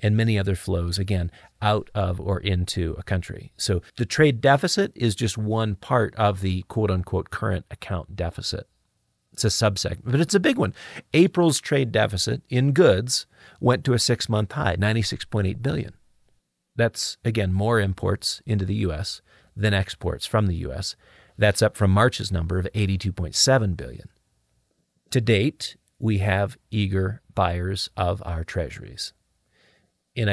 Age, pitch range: 40-59, 95-120 Hz